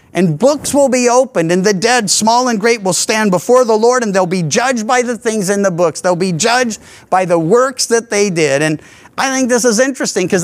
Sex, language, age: male, English, 50-69